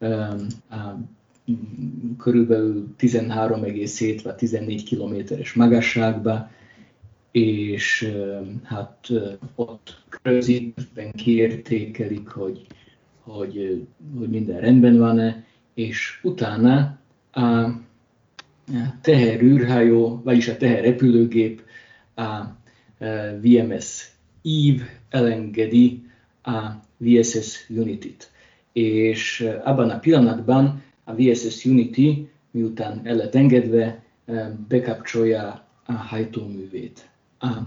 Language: Hungarian